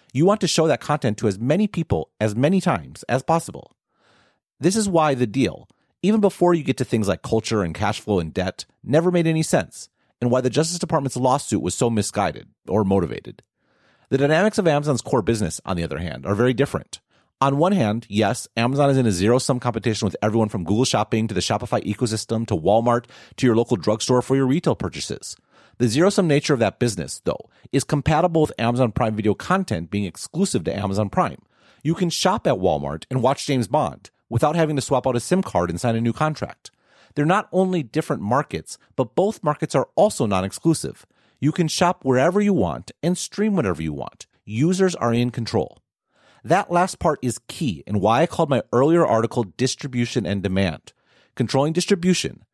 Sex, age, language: male, 40-59, English